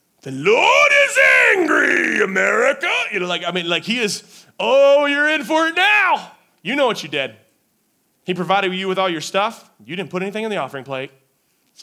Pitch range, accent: 155-215 Hz, American